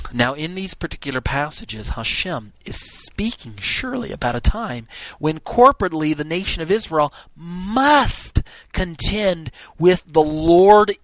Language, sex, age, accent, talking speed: English, male, 40-59, American, 125 wpm